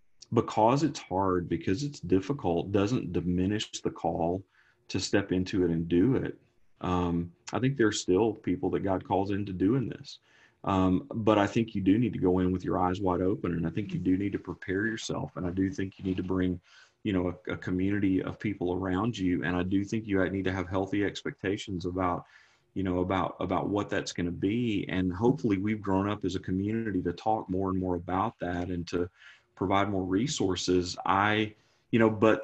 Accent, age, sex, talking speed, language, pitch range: American, 30-49, male, 215 wpm, English, 95-115 Hz